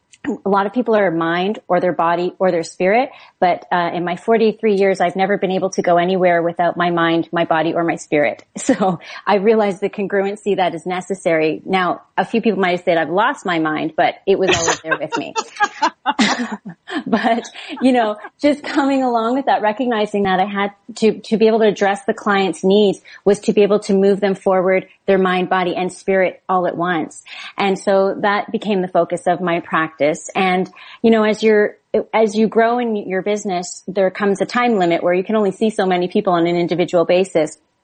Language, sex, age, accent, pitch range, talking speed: English, female, 30-49, American, 175-210 Hz, 210 wpm